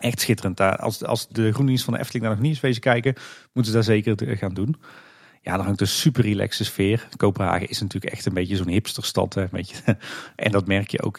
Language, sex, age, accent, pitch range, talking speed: Dutch, male, 40-59, Dutch, 95-115 Hz, 225 wpm